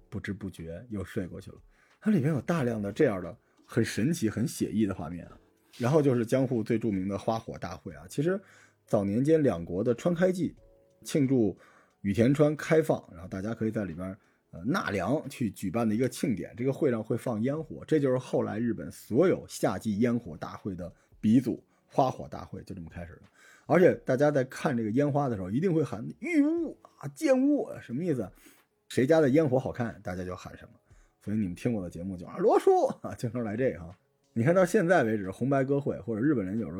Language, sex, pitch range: Chinese, male, 100-150 Hz